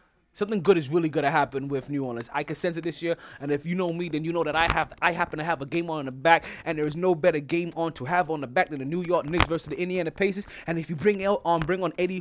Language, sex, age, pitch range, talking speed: English, male, 20-39, 170-250 Hz, 325 wpm